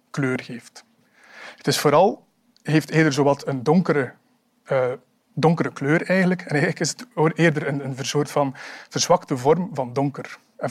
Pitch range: 135-175 Hz